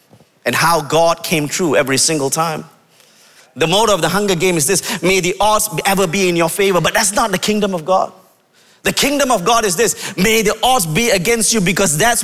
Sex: male